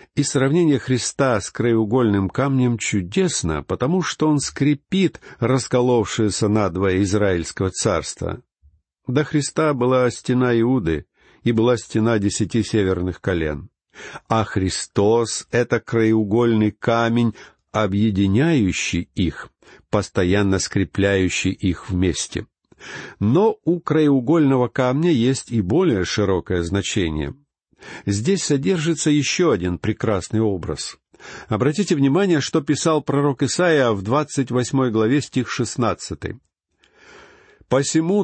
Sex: male